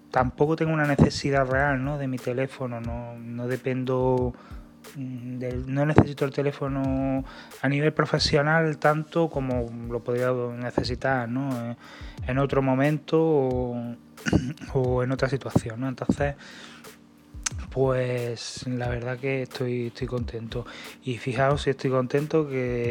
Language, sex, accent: Spanish, male, Spanish